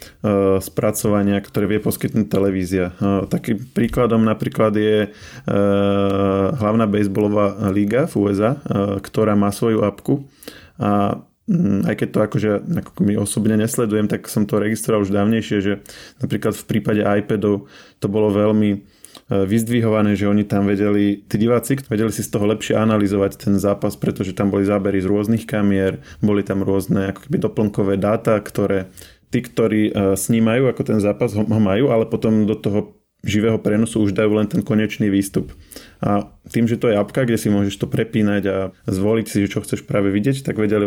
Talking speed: 165 wpm